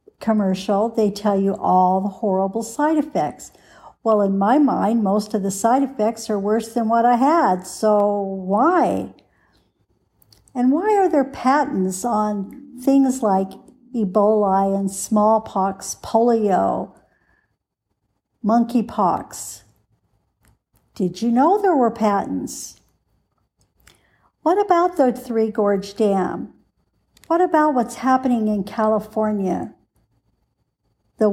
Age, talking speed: 60-79, 110 wpm